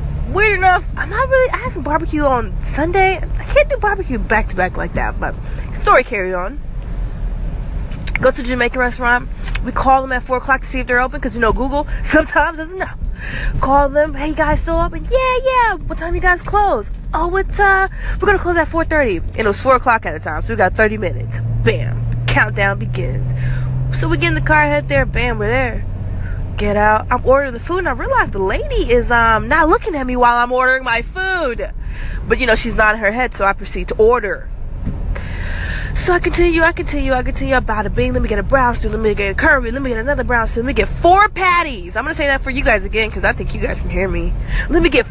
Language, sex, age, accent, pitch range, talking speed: English, female, 20-39, American, 215-330 Hz, 245 wpm